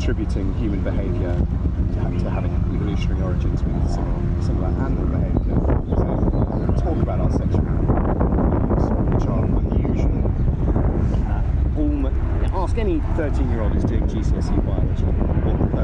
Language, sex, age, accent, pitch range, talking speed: English, male, 40-59, British, 80-100 Hz, 140 wpm